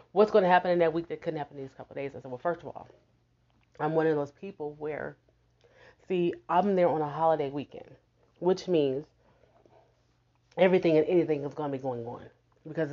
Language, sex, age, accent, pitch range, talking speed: English, female, 30-49, American, 140-170 Hz, 215 wpm